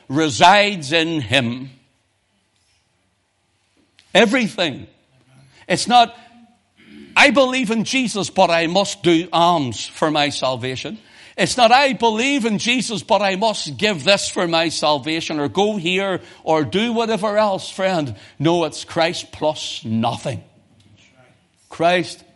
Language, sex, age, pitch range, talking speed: English, male, 60-79, 110-165 Hz, 125 wpm